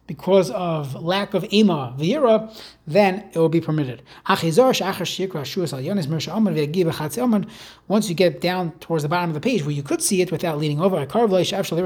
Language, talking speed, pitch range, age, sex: English, 150 wpm, 155-200 Hz, 30-49, male